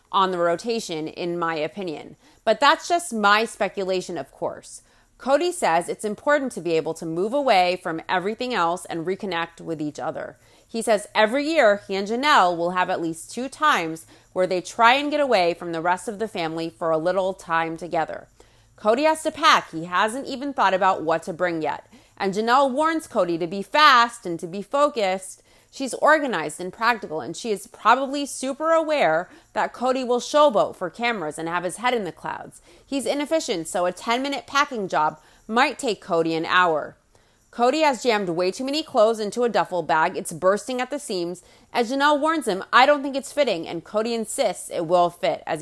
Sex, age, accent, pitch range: female, 30-49, American, 175-265 Hz